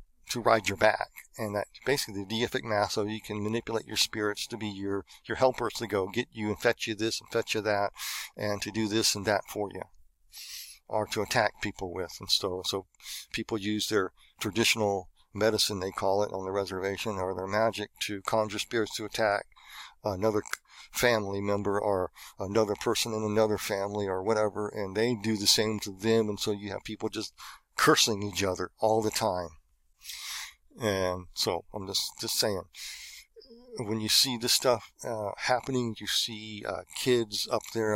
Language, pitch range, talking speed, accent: English, 100-110 Hz, 185 wpm, American